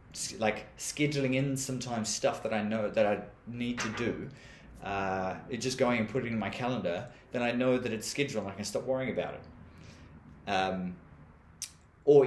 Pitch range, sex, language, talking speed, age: 105-135 Hz, male, English, 185 wpm, 30-49